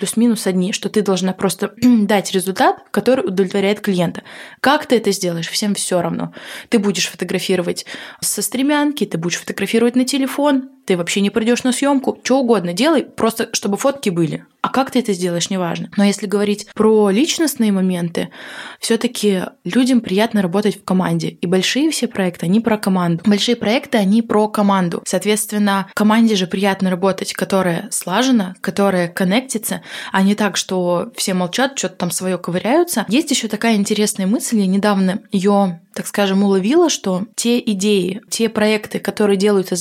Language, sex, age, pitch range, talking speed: Russian, female, 20-39, 190-230 Hz, 165 wpm